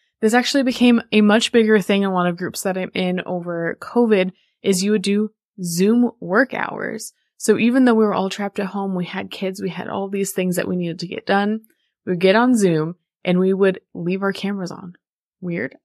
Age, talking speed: 20-39, 225 wpm